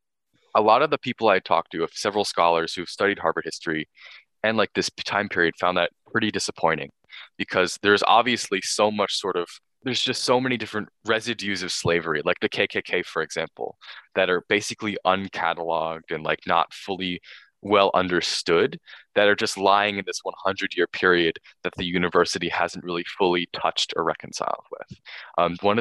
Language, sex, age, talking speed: English, male, 20-39, 175 wpm